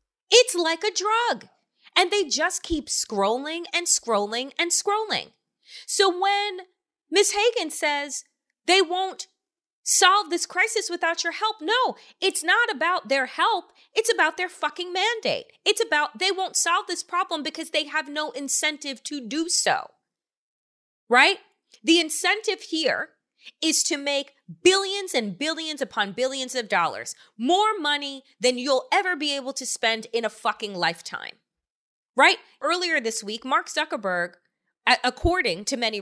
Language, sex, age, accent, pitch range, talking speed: English, female, 30-49, American, 255-375 Hz, 145 wpm